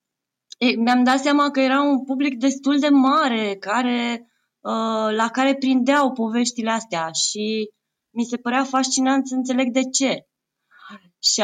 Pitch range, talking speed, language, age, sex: 200-260 Hz, 145 wpm, Romanian, 20-39, female